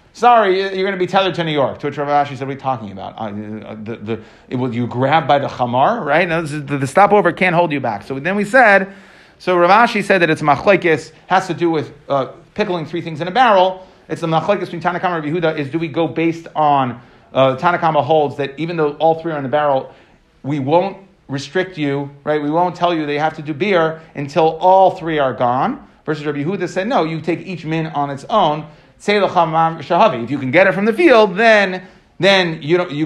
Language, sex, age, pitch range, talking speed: English, male, 30-49, 145-180 Hz, 230 wpm